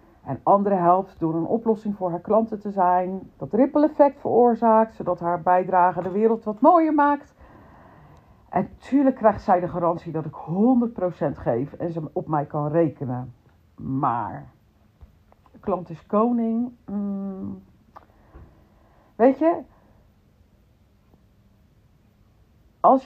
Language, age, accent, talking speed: Dutch, 50-69, Dutch, 120 wpm